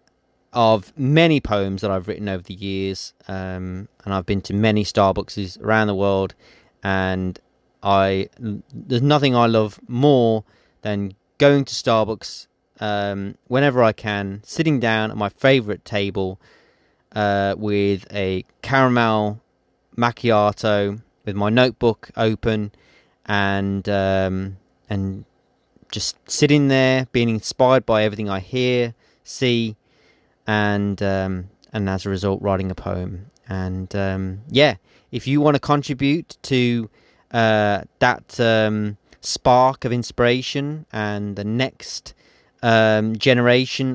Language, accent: English, British